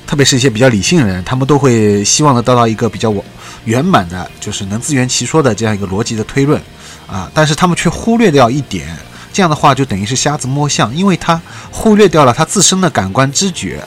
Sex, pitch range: male, 110-165 Hz